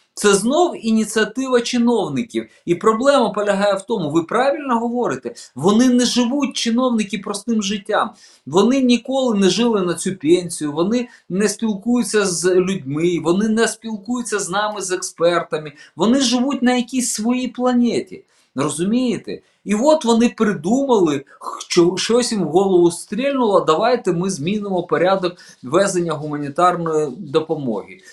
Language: Ukrainian